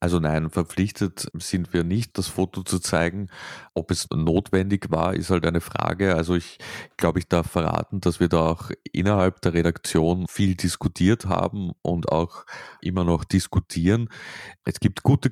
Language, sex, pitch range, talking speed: German, male, 80-95 Hz, 165 wpm